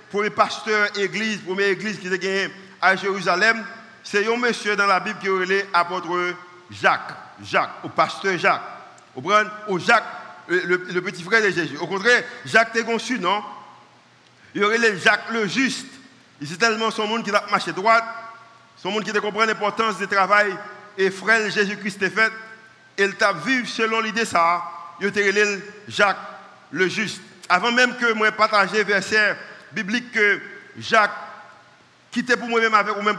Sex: male